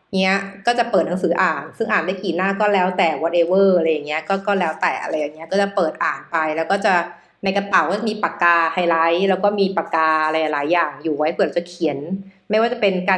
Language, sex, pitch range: Thai, female, 170-210 Hz